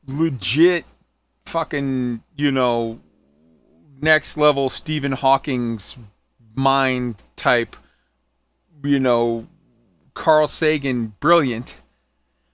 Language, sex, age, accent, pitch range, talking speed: English, male, 30-49, American, 135-185 Hz, 70 wpm